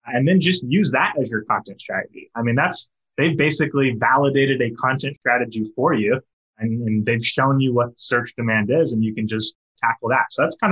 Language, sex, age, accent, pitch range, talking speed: English, male, 20-39, American, 115-140 Hz, 220 wpm